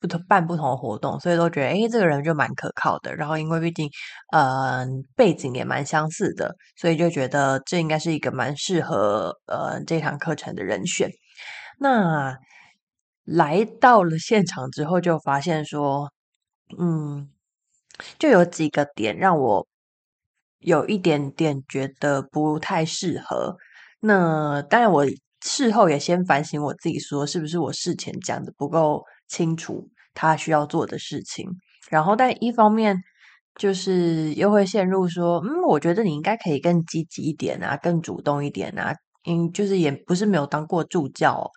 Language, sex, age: Chinese, female, 20-39